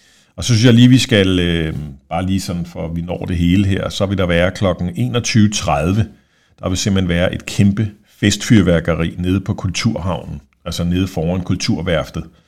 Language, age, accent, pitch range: Danish, 50-69, native, 85-105 Hz